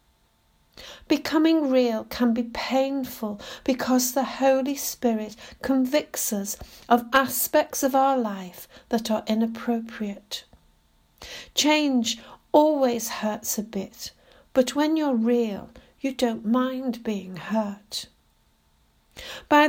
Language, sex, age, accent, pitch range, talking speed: English, female, 60-79, British, 220-270 Hz, 105 wpm